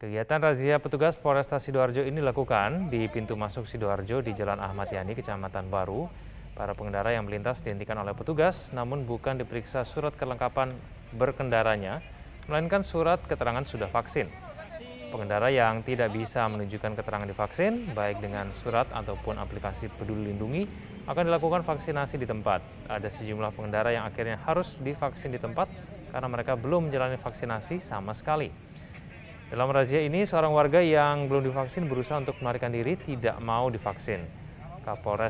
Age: 20-39